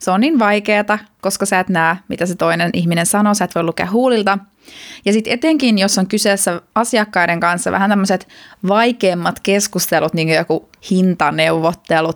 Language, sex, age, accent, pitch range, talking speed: Finnish, female, 20-39, native, 185-245 Hz, 170 wpm